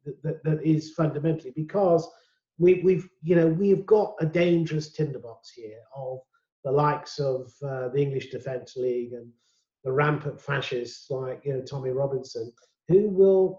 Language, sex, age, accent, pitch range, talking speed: English, male, 40-59, British, 140-175 Hz, 155 wpm